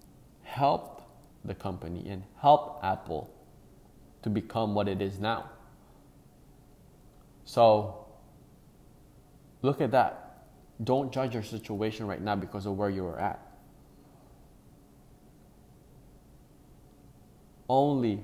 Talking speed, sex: 95 wpm, male